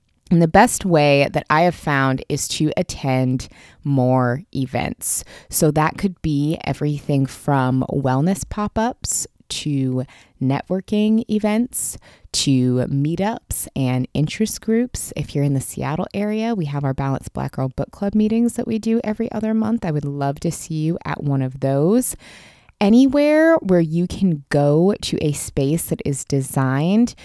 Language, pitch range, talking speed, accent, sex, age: English, 135-190 Hz, 155 wpm, American, female, 20-39